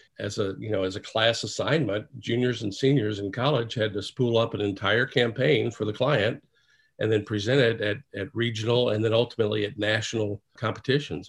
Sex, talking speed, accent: male, 190 wpm, American